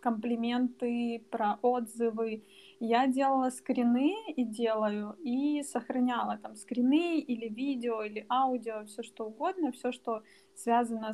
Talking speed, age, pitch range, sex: 120 wpm, 20-39, 225-270 Hz, female